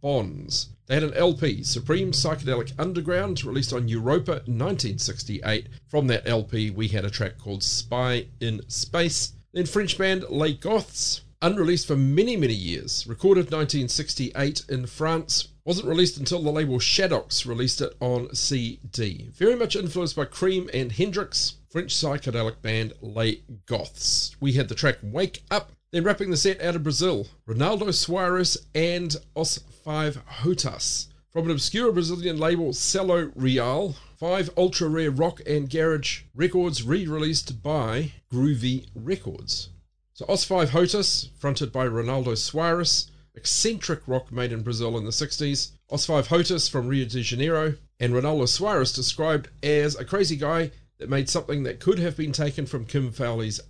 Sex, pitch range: male, 125-170 Hz